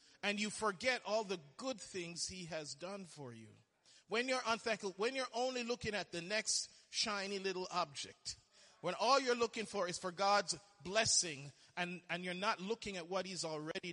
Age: 40-59